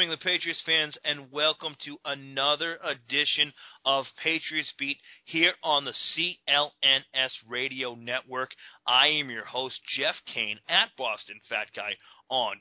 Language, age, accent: English, 30-49, American